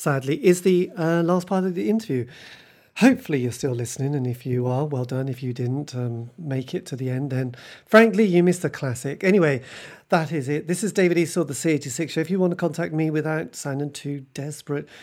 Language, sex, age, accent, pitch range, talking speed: English, male, 40-59, British, 135-180 Hz, 220 wpm